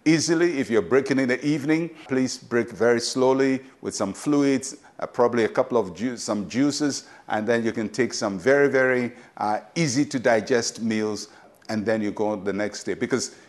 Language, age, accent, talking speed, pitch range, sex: English, 50-69, Nigerian, 185 wpm, 110-140 Hz, male